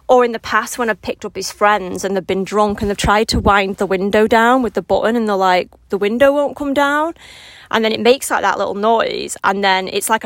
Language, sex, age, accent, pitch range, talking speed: English, female, 20-39, British, 185-220 Hz, 265 wpm